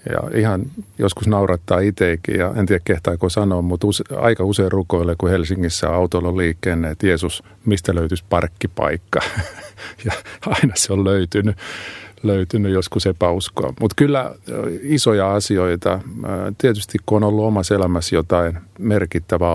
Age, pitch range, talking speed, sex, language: 50-69, 90-105 Hz, 140 wpm, male, Finnish